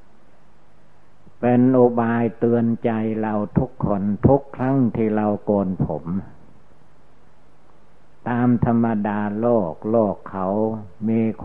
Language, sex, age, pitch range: Thai, male, 60-79, 95-110 Hz